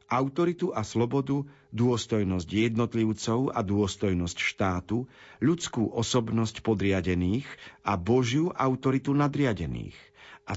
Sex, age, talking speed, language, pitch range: male, 50-69, 90 wpm, Slovak, 100-135 Hz